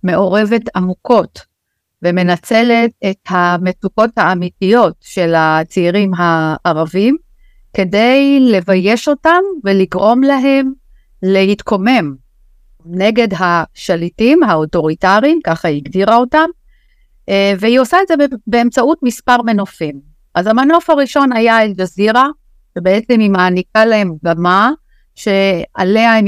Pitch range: 175-230 Hz